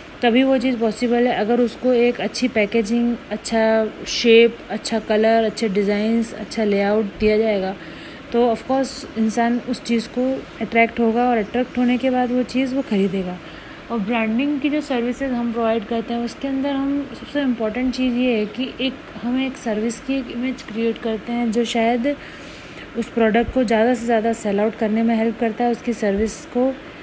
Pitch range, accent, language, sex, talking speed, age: 220-250 Hz, native, Hindi, female, 190 wpm, 30-49